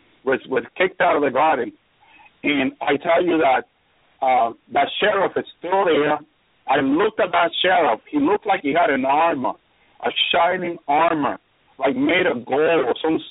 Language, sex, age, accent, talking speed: English, male, 50-69, American, 170 wpm